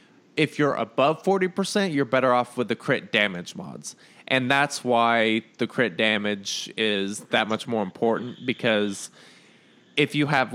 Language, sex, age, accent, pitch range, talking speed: English, male, 20-39, American, 110-135 Hz, 155 wpm